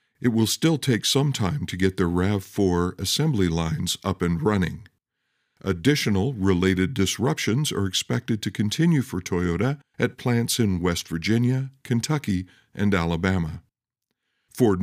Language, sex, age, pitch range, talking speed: English, male, 50-69, 95-125 Hz, 135 wpm